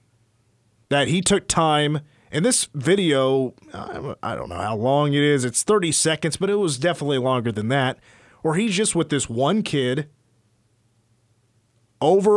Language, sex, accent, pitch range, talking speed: English, male, American, 115-155 Hz, 155 wpm